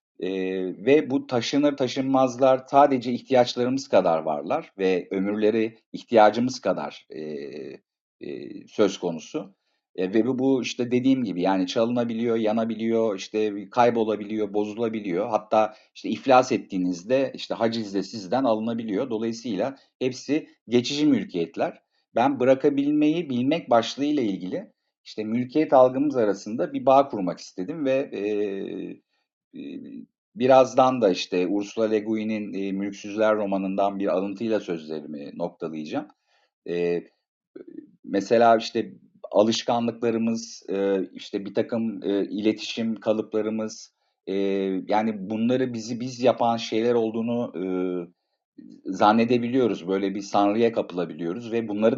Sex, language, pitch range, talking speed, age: male, Turkish, 95-125 Hz, 105 wpm, 50-69